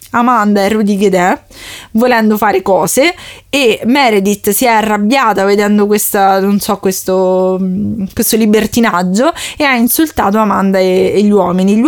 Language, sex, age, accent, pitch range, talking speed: Italian, female, 20-39, native, 195-240 Hz, 140 wpm